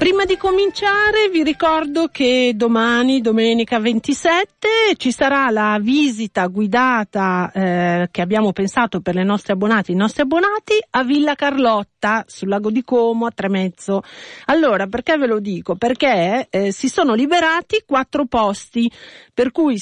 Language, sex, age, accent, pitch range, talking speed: Italian, female, 40-59, native, 195-265 Hz, 140 wpm